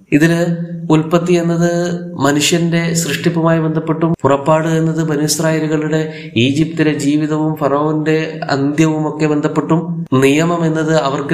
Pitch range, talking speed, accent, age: 140-160 Hz, 90 wpm, native, 20-39